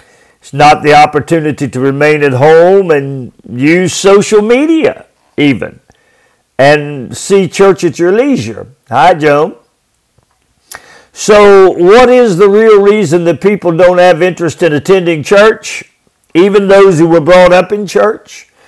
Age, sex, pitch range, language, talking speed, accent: 50-69, male, 145-195 Hz, English, 140 wpm, American